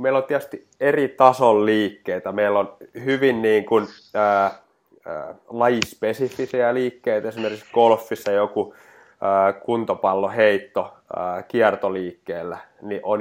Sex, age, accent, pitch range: male, 20-39, native, 100-120 Hz